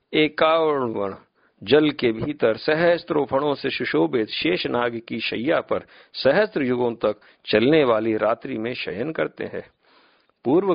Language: Hindi